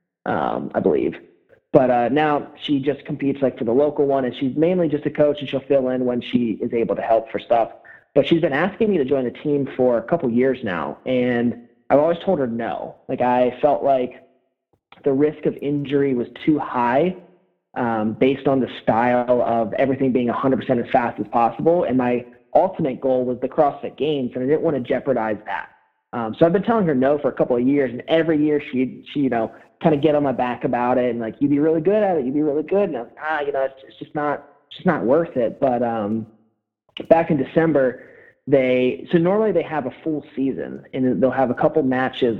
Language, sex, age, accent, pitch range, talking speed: English, male, 30-49, American, 125-150 Hz, 235 wpm